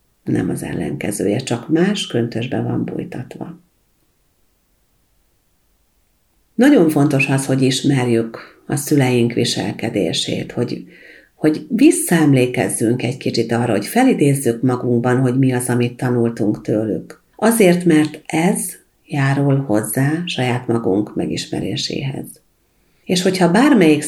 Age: 50-69